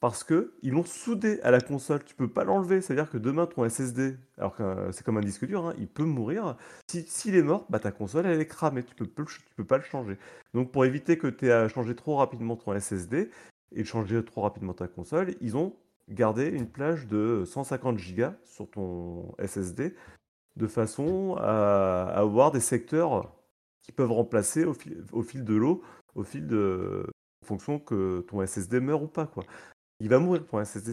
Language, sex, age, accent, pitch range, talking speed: French, male, 30-49, French, 100-140 Hz, 210 wpm